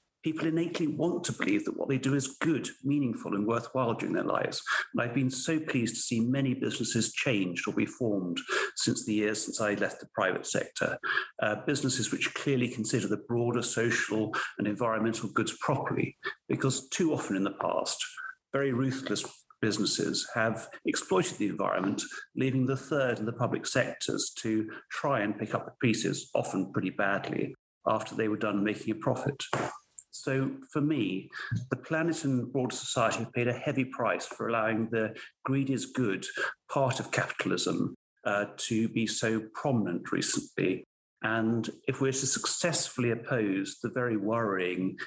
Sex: male